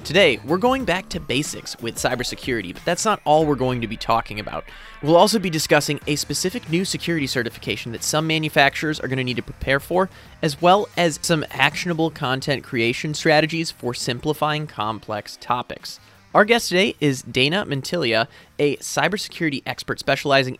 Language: English